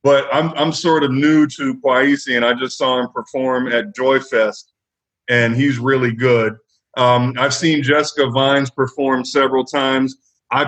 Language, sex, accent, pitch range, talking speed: English, male, American, 120-140 Hz, 165 wpm